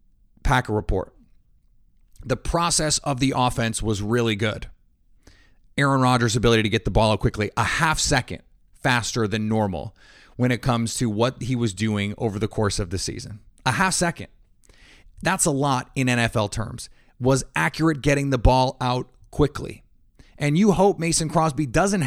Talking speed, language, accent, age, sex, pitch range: 165 wpm, English, American, 30-49, male, 105-140 Hz